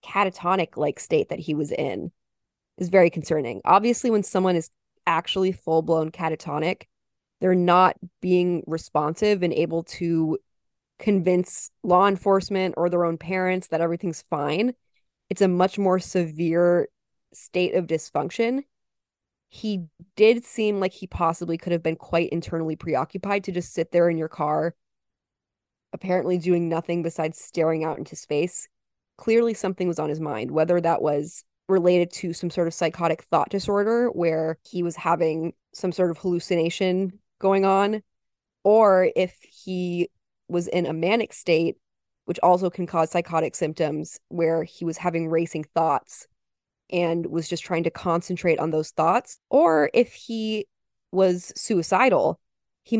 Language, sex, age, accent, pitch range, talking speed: English, female, 20-39, American, 165-190 Hz, 150 wpm